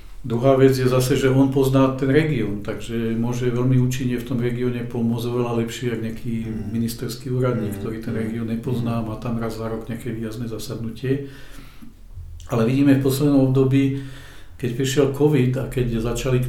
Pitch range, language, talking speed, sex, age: 115-125 Hz, Czech, 165 wpm, male, 50-69